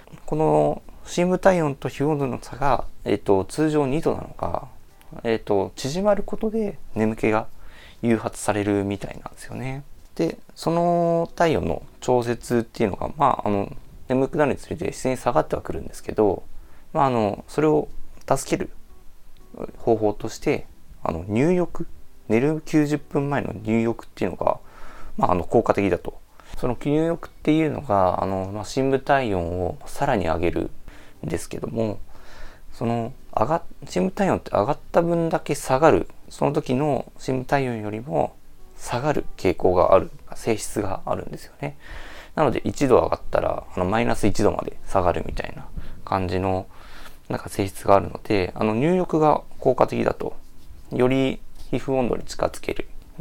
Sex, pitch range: male, 100-150 Hz